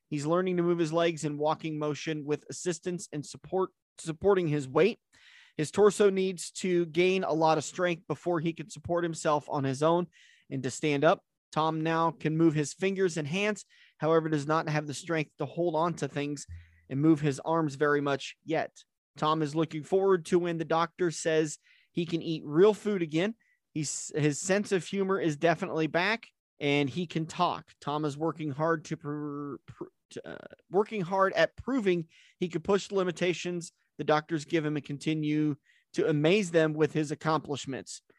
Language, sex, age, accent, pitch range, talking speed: English, male, 30-49, American, 150-175 Hz, 185 wpm